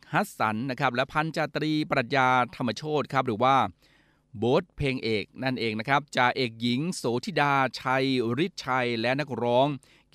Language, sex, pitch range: Thai, male, 120-145 Hz